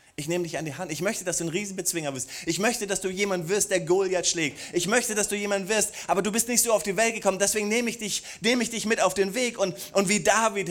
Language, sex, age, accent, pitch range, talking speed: German, male, 30-49, German, 130-205 Hz, 290 wpm